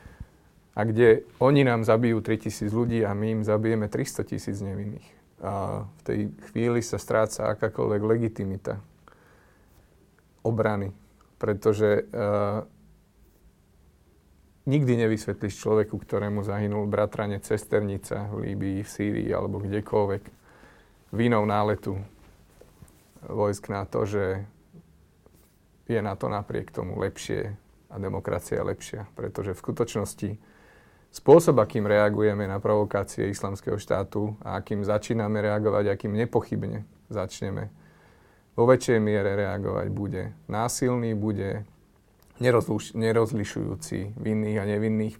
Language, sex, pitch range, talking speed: Slovak, male, 100-110 Hz, 110 wpm